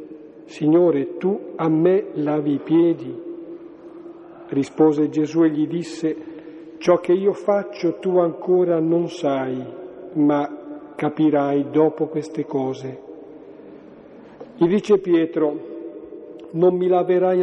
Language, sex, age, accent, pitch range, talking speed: Italian, male, 50-69, native, 145-175 Hz, 105 wpm